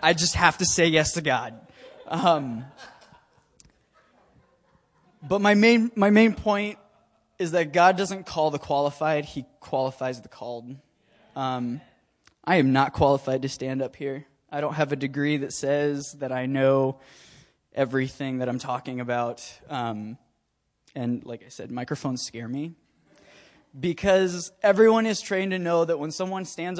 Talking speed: 150 wpm